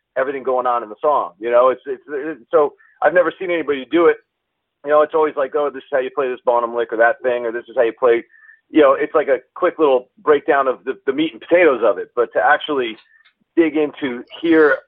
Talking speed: 255 wpm